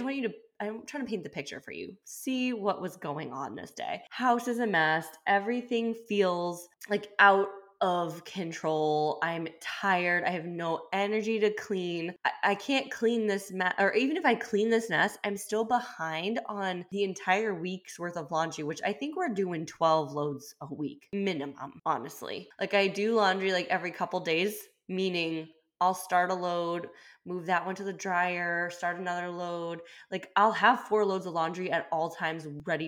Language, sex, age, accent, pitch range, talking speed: English, female, 20-39, American, 165-215 Hz, 190 wpm